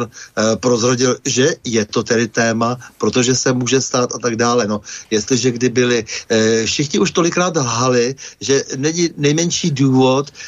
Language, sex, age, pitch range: Slovak, male, 60-79, 115-140 Hz